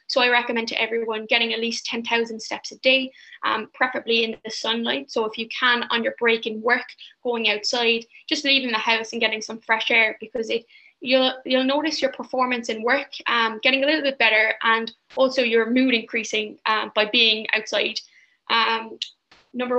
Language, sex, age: English, female, 10-29